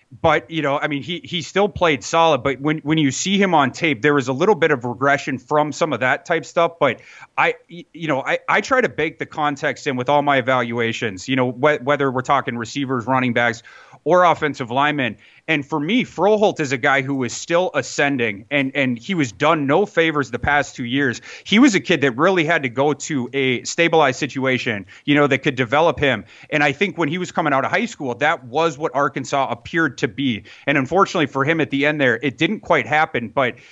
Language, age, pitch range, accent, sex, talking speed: English, 30-49, 135-165 Hz, American, male, 235 wpm